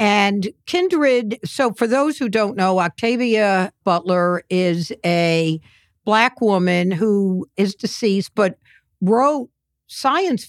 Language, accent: English, American